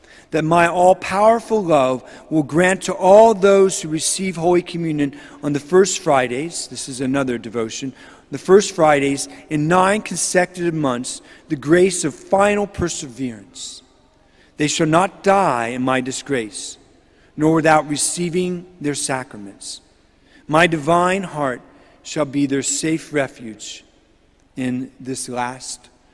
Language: English